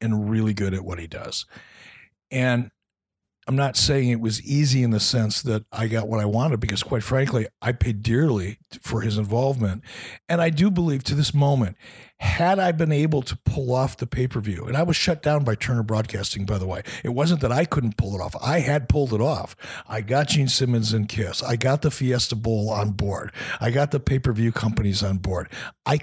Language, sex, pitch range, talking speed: English, male, 105-135 Hz, 215 wpm